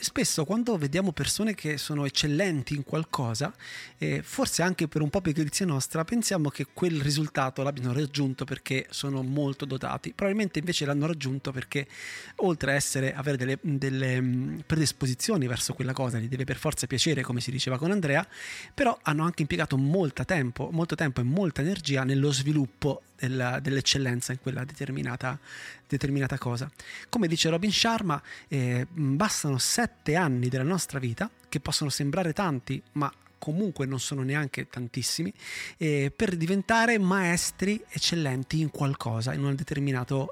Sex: male